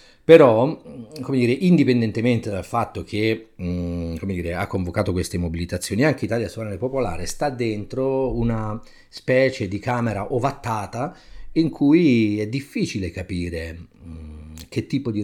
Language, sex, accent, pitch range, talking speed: Italian, male, native, 85-115 Hz, 135 wpm